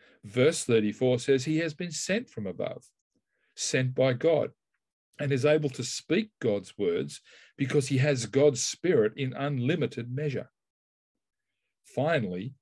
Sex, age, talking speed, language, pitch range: male, 50-69, 135 wpm, English, 110-140 Hz